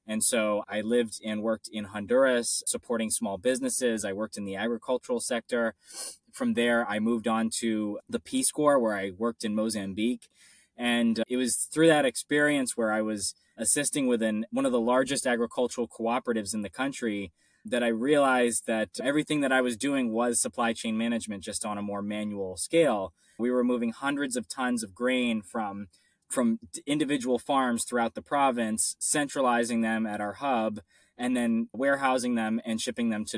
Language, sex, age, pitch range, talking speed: English, male, 20-39, 110-125 Hz, 175 wpm